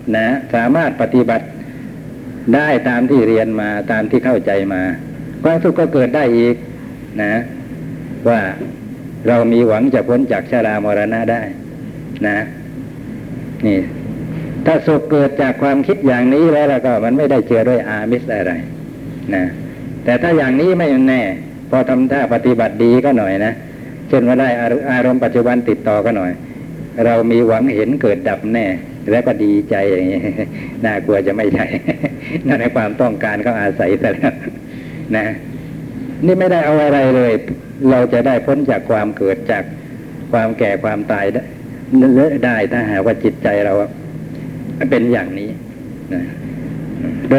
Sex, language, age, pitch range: male, Thai, 60-79, 115-140 Hz